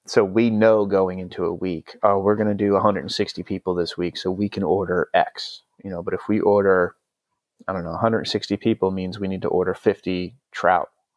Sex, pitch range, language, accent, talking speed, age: male, 95-110 Hz, English, American, 210 wpm, 30-49